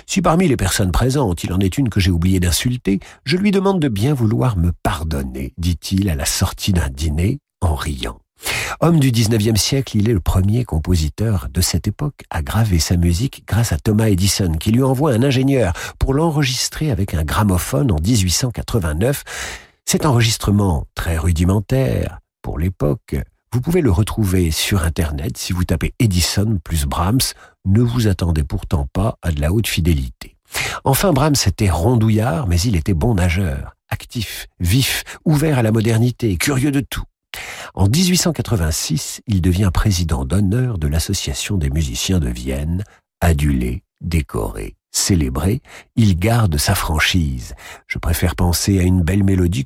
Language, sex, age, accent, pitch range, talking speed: French, male, 50-69, French, 85-115 Hz, 160 wpm